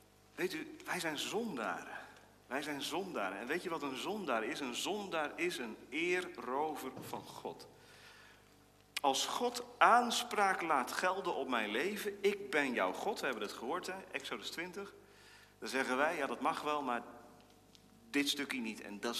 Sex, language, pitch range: male, Dutch, 100-140 Hz